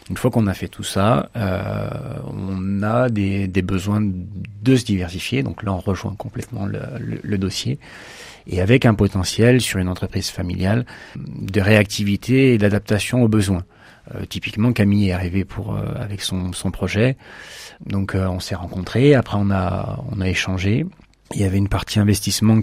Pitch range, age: 95-115 Hz, 40-59